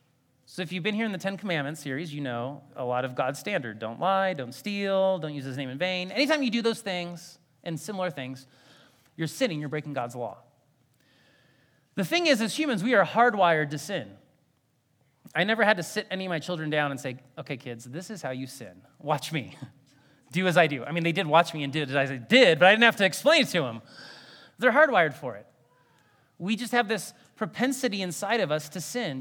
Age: 30-49